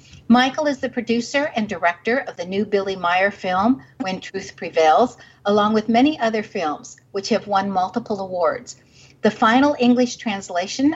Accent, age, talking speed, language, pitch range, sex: American, 50-69, 160 wpm, English, 180-230 Hz, female